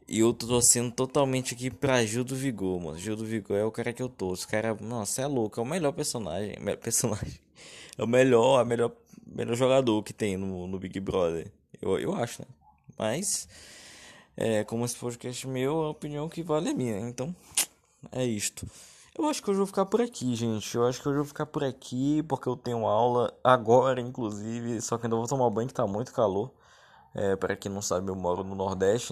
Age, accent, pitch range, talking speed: 10-29, Brazilian, 110-150 Hz, 215 wpm